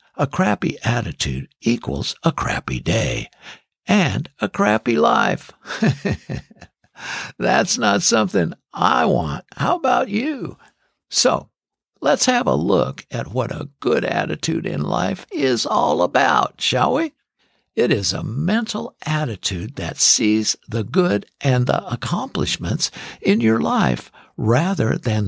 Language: English